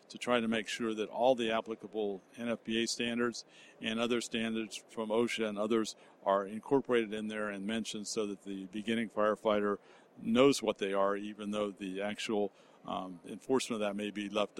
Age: 50-69